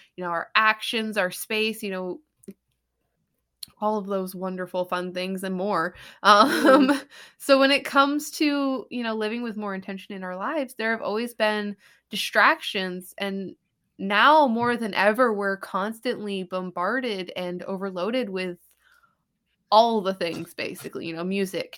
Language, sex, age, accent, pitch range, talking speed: English, female, 20-39, American, 195-245 Hz, 150 wpm